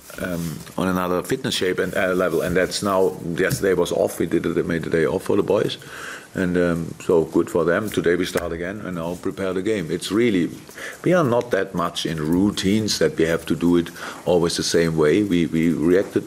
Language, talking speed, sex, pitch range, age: English, 225 wpm, male, 80-95 Hz, 50-69